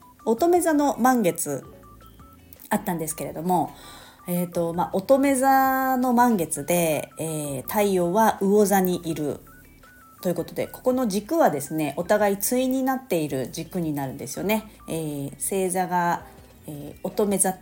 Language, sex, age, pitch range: Japanese, female, 40-59, 155-230 Hz